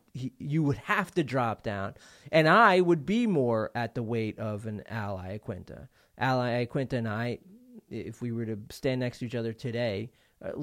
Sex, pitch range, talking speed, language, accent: male, 110-130 Hz, 185 wpm, English, American